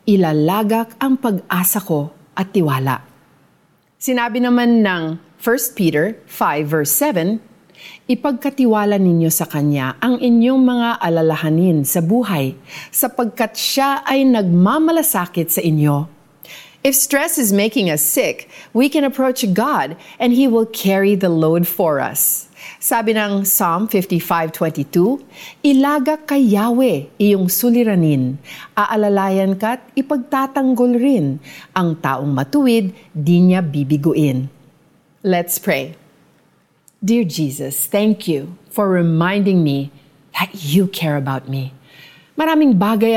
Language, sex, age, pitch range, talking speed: Filipino, female, 40-59, 155-235 Hz, 115 wpm